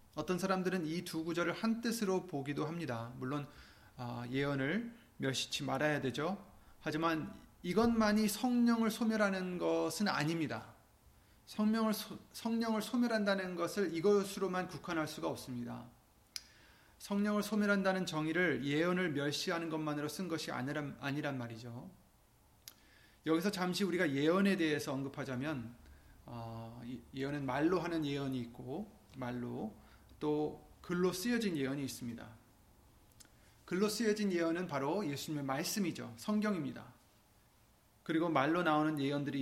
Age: 30-49